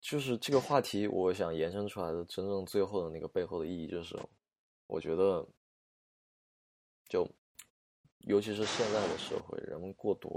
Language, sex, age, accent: Chinese, male, 20-39, native